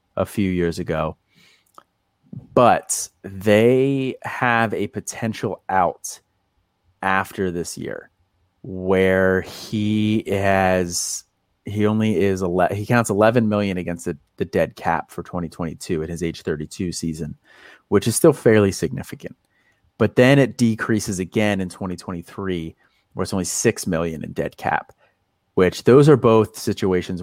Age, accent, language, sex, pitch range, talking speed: 30-49, American, English, male, 90-105 Hz, 135 wpm